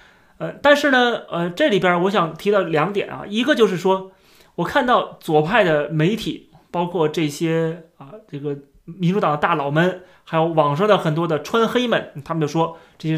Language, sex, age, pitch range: Chinese, male, 30-49, 155-215 Hz